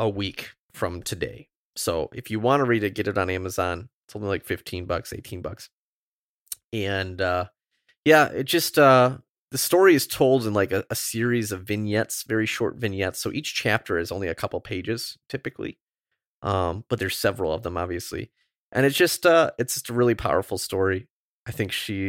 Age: 30-49